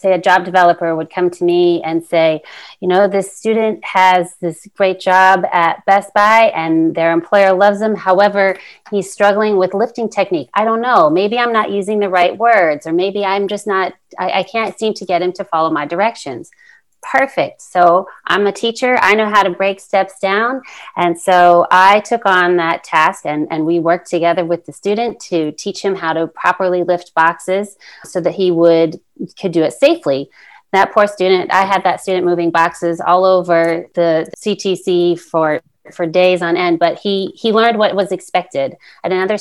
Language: English